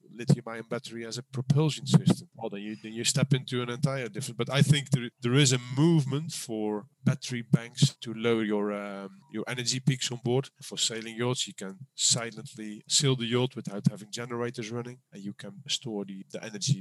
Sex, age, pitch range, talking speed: male, 40-59, 110-140 Hz, 205 wpm